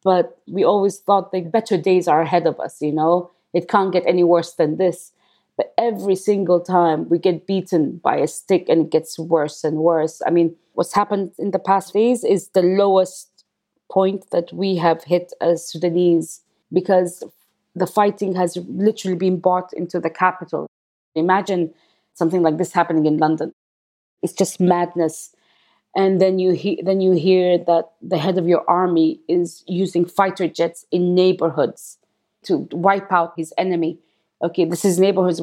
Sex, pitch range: female, 165-185 Hz